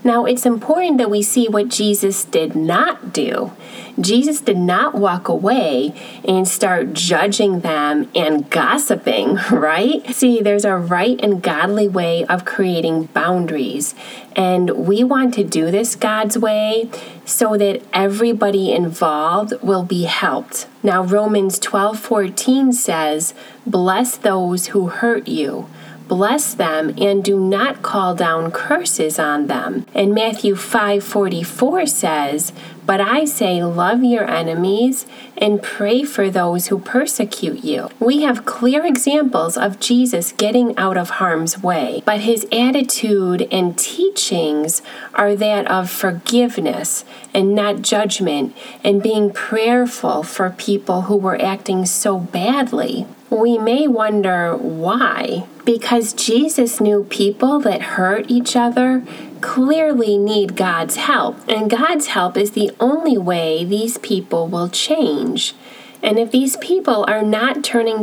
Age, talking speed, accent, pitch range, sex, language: 30-49, 135 wpm, American, 185-245 Hz, female, English